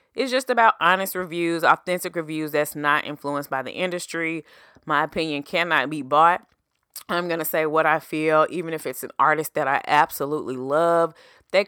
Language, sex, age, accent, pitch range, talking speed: English, female, 20-39, American, 145-175 Hz, 180 wpm